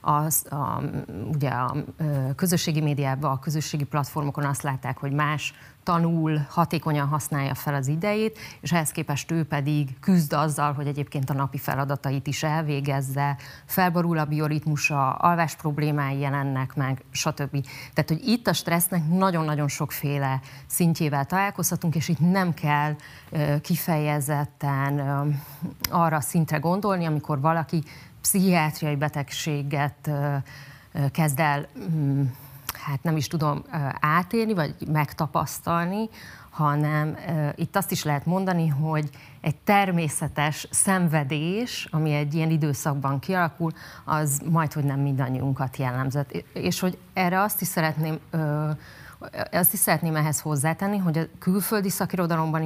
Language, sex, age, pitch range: Hungarian, female, 30-49, 140-165 Hz